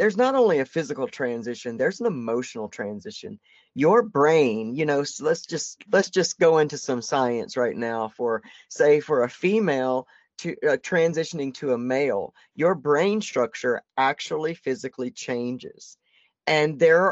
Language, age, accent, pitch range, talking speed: English, 40-59, American, 125-170 Hz, 145 wpm